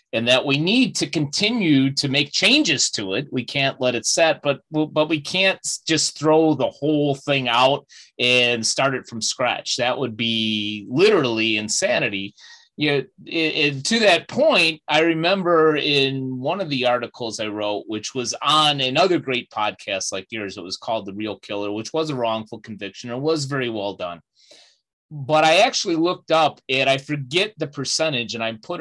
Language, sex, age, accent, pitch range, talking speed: English, male, 30-49, American, 115-160 Hz, 175 wpm